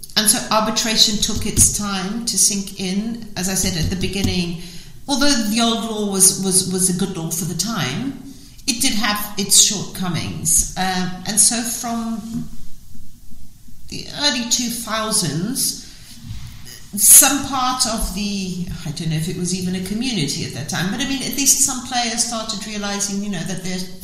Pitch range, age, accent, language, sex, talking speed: 160-215 Hz, 40-59, British, English, female, 170 wpm